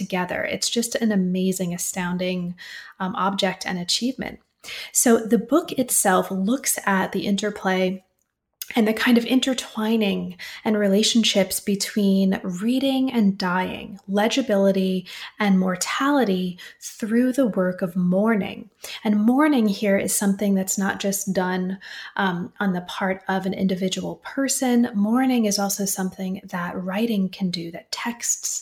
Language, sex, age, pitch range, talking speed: English, female, 30-49, 190-225 Hz, 130 wpm